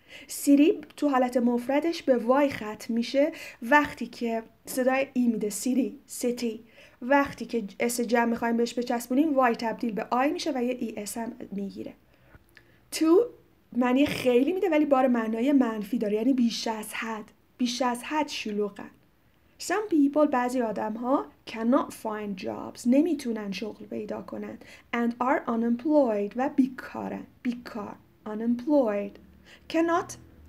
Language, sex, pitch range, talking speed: Persian, female, 230-285 Hz, 135 wpm